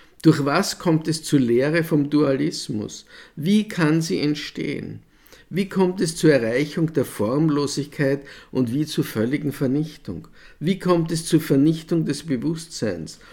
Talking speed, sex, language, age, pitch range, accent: 140 wpm, male, German, 50-69, 115-160 Hz, Austrian